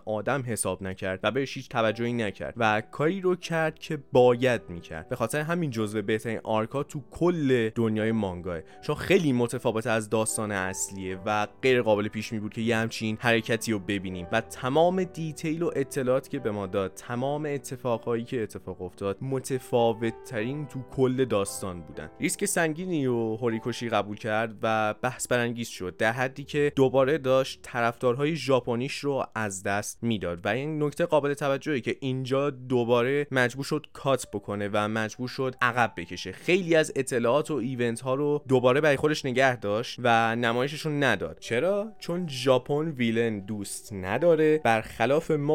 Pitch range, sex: 110-145 Hz, male